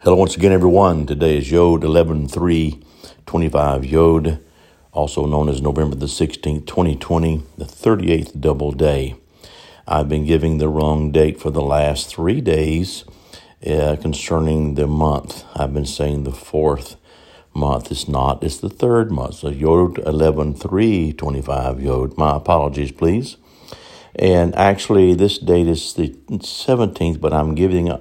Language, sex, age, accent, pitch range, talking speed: English, male, 60-79, American, 75-85 Hz, 150 wpm